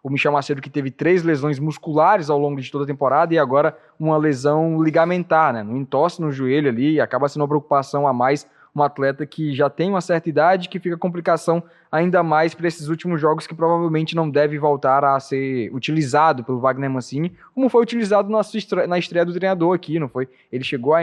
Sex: male